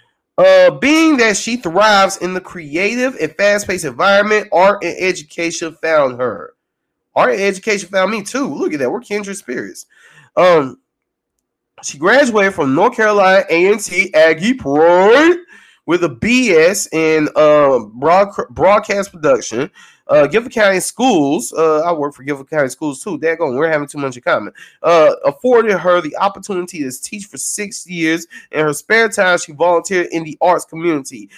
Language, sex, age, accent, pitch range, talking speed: English, male, 20-39, American, 160-215 Hz, 165 wpm